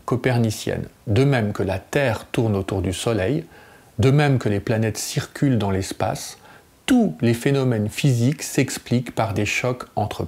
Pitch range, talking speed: 105-135 Hz, 160 wpm